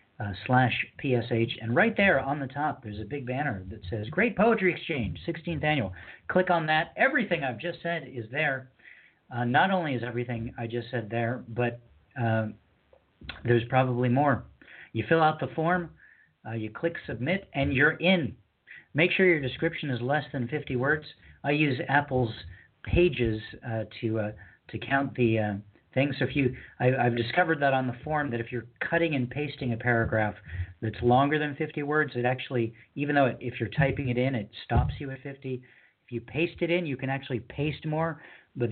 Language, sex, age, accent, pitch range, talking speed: English, male, 40-59, American, 115-150 Hz, 195 wpm